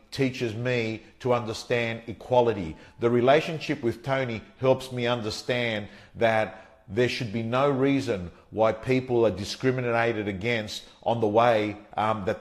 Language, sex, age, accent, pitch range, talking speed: English, male, 50-69, Australian, 110-125 Hz, 135 wpm